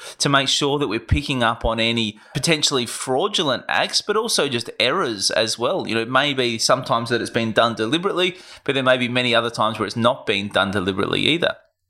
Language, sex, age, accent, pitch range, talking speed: English, male, 20-39, Australian, 120-150 Hz, 215 wpm